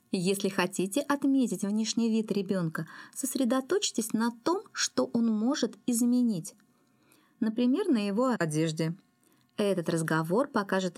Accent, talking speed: native, 110 wpm